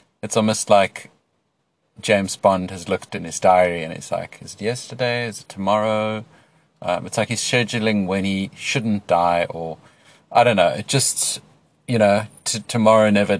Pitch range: 90-110 Hz